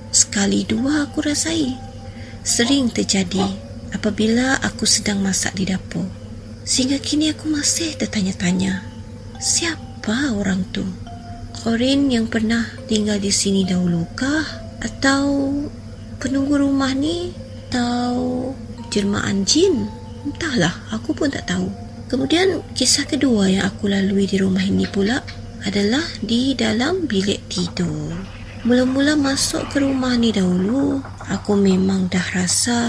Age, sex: 30-49, female